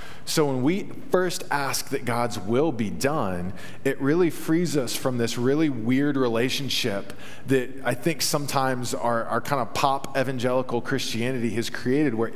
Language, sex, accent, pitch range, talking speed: English, male, American, 120-145 Hz, 160 wpm